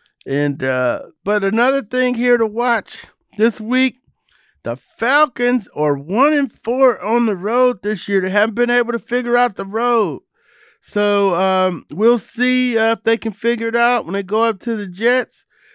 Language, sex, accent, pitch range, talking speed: English, male, American, 170-225 Hz, 185 wpm